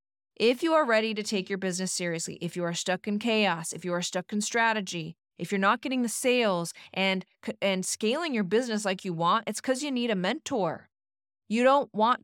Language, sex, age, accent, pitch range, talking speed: English, female, 30-49, American, 180-230 Hz, 215 wpm